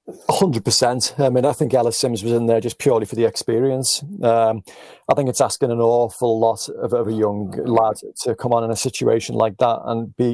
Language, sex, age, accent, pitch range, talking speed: English, male, 30-49, British, 115-135 Hz, 225 wpm